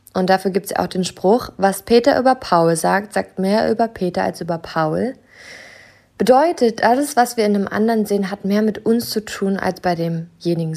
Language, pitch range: German, 180-225 Hz